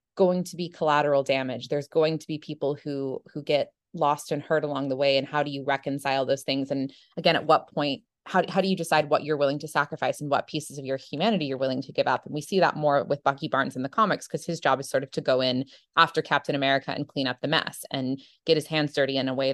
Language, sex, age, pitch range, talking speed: English, female, 20-39, 135-160 Hz, 270 wpm